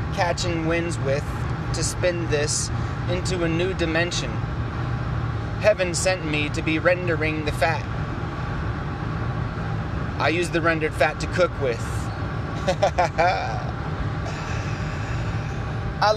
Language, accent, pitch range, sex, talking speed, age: English, American, 115-165 Hz, male, 100 wpm, 30-49